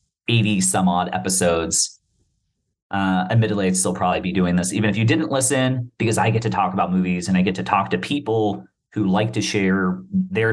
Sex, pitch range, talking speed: male, 95-115 Hz, 195 wpm